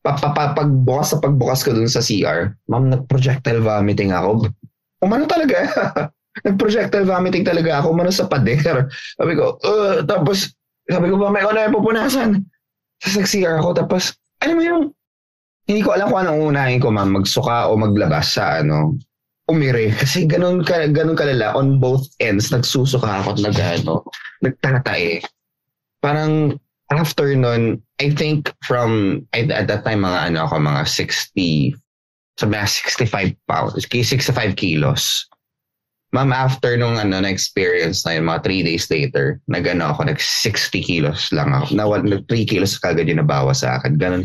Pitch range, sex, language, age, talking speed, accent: 110-160 Hz, male, Filipino, 20-39, 165 wpm, native